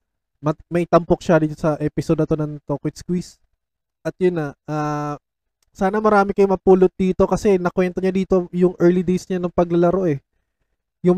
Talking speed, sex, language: 170 wpm, male, Filipino